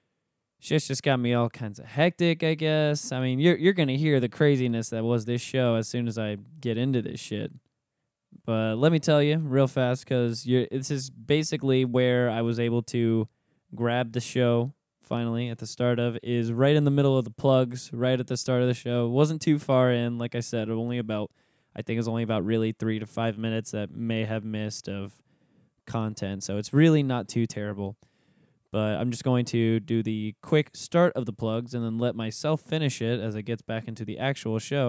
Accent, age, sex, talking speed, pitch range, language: American, 20-39, male, 220 wpm, 115-135 Hz, English